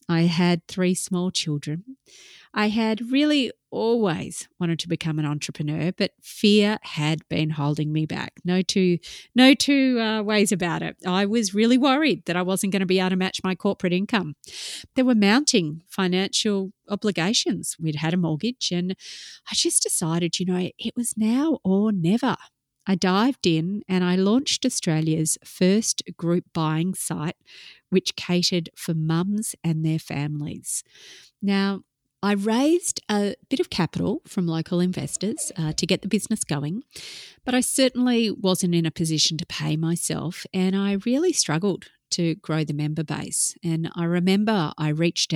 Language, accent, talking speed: English, Australian, 165 wpm